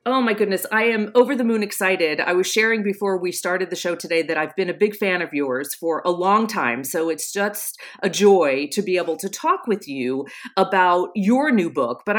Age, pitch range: 40-59, 170-230 Hz